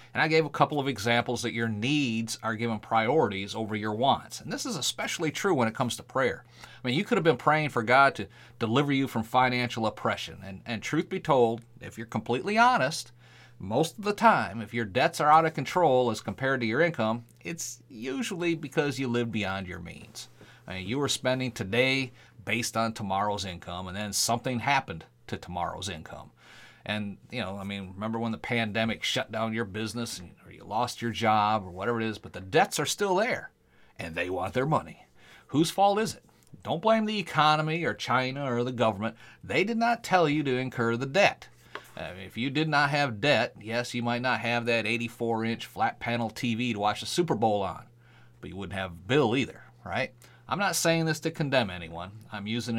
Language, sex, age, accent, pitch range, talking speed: English, male, 40-59, American, 110-140 Hz, 210 wpm